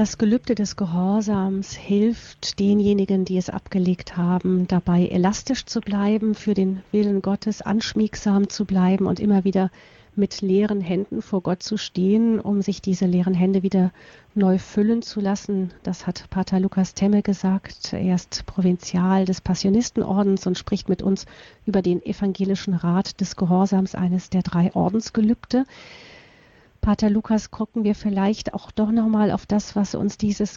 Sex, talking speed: female, 155 wpm